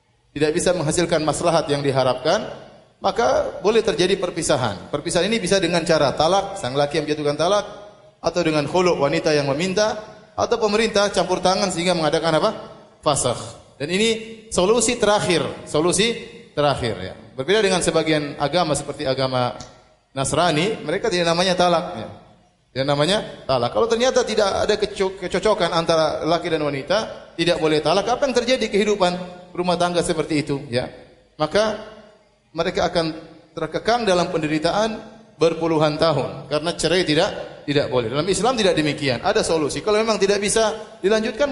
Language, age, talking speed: Indonesian, 30-49, 145 wpm